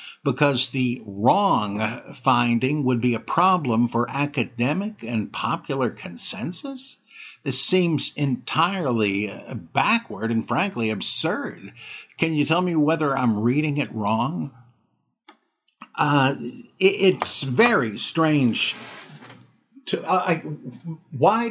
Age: 60-79